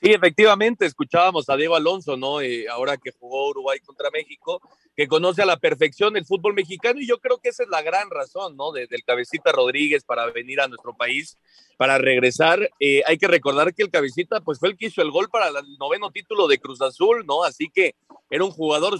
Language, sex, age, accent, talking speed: Spanish, male, 30-49, Mexican, 220 wpm